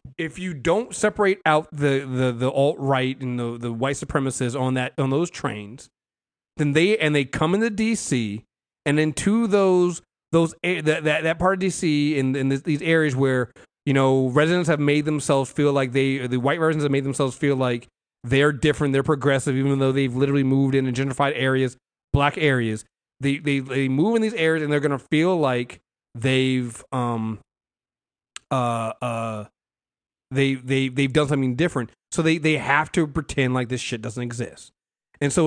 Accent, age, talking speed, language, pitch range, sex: American, 30-49, 190 wpm, English, 125-155 Hz, male